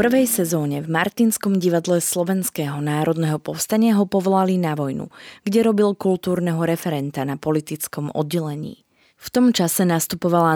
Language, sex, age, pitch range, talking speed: Slovak, female, 20-39, 155-195 Hz, 135 wpm